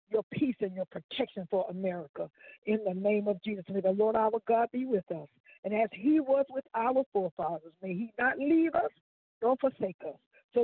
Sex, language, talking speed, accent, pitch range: female, English, 205 wpm, American, 185-270 Hz